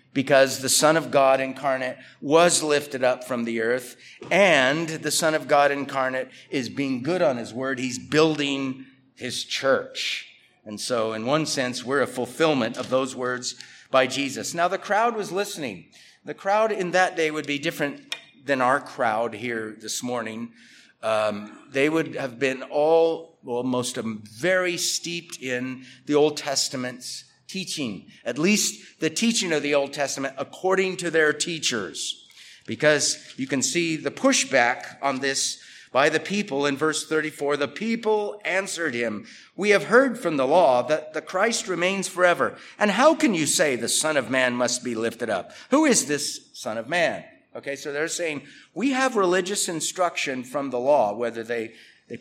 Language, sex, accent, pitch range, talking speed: English, male, American, 125-170 Hz, 175 wpm